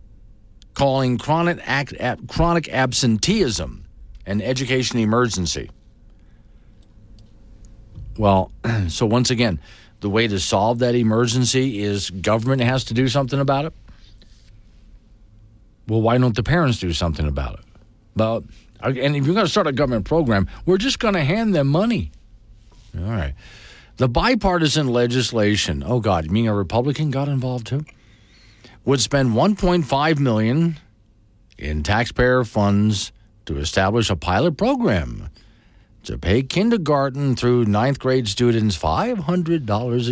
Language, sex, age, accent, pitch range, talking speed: English, male, 50-69, American, 100-135 Hz, 130 wpm